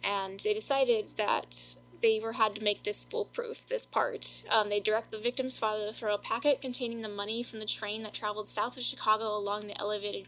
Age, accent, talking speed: 10-29, American, 215 wpm